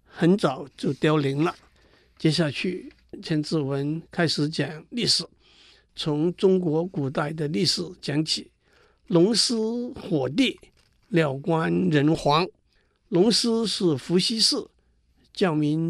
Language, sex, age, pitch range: Chinese, male, 60-79, 150-190 Hz